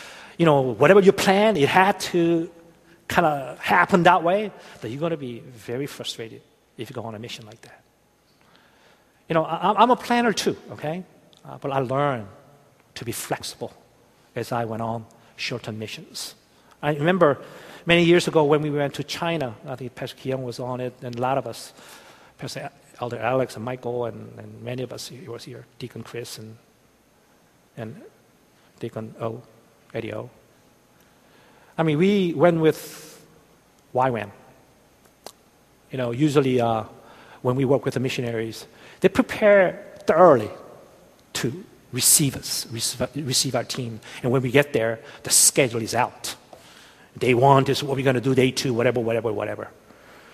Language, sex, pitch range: Korean, male, 115-150 Hz